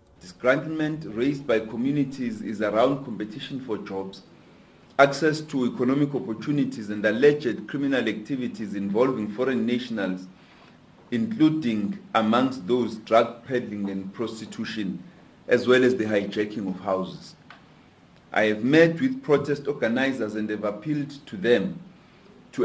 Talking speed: 120 wpm